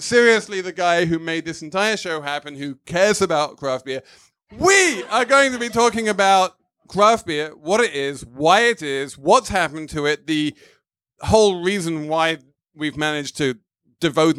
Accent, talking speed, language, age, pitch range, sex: British, 170 wpm, English, 30-49, 140-185 Hz, male